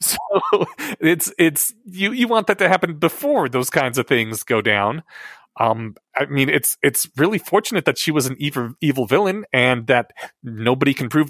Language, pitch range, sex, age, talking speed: English, 115-145 Hz, male, 30-49, 185 wpm